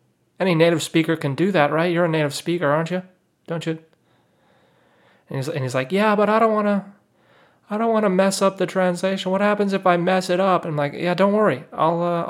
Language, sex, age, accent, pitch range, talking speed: English, male, 30-49, American, 155-190 Hz, 240 wpm